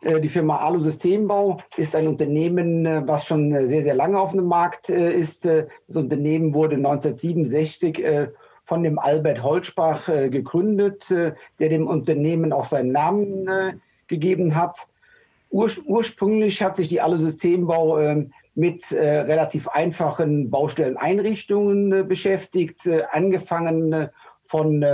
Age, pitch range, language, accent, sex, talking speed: 50-69, 150-180 Hz, German, German, male, 110 wpm